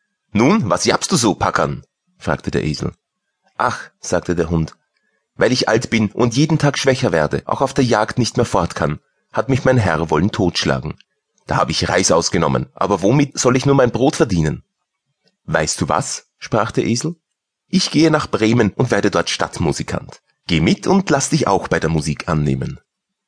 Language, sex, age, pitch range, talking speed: German, male, 30-49, 90-140 Hz, 190 wpm